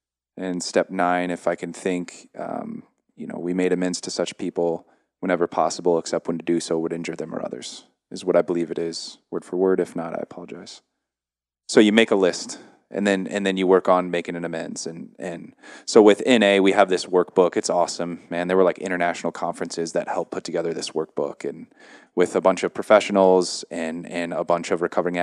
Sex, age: male, 20-39